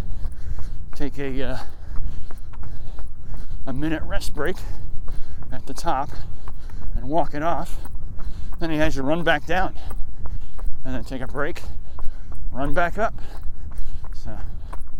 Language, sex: English, male